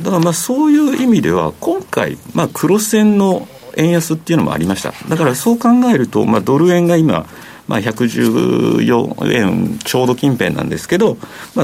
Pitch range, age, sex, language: 120-185 Hz, 50-69, male, Japanese